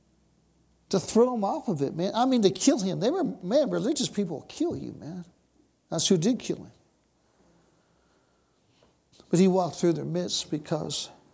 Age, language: 60-79, English